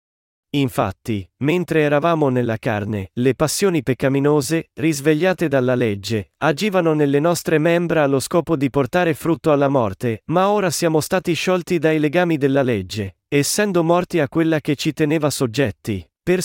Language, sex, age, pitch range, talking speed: Italian, male, 40-59, 125-165 Hz, 145 wpm